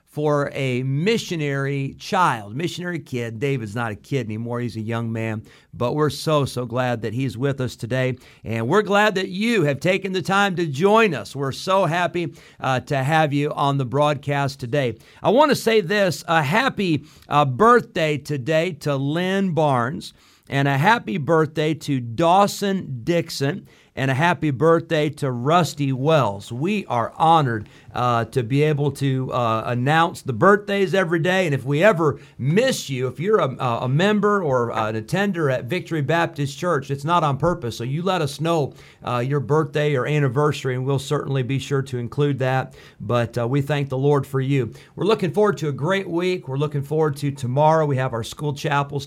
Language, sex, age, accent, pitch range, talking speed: English, male, 50-69, American, 130-160 Hz, 190 wpm